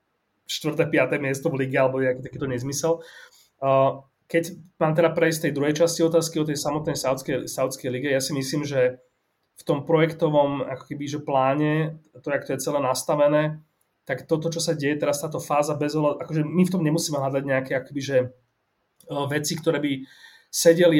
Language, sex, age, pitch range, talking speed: Slovak, male, 30-49, 130-160 Hz, 180 wpm